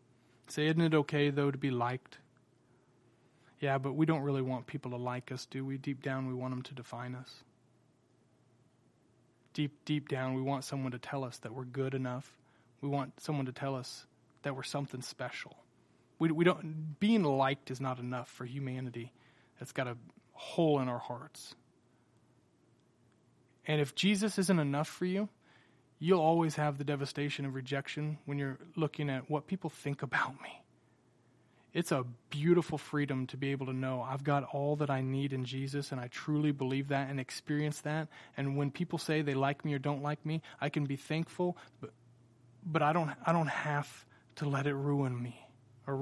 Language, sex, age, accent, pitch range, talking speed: English, male, 30-49, American, 125-145 Hz, 190 wpm